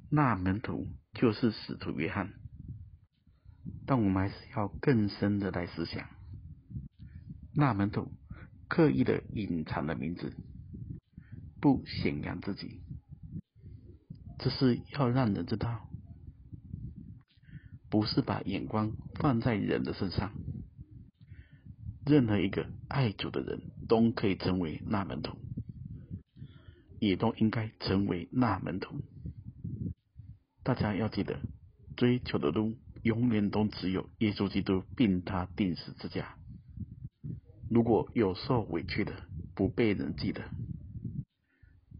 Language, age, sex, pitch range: Chinese, 50-69, male, 95-120 Hz